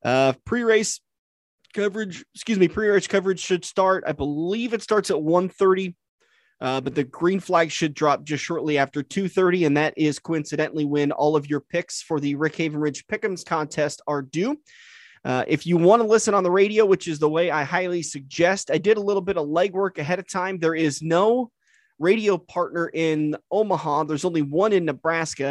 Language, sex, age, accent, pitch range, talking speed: English, male, 20-39, American, 150-185 Hz, 195 wpm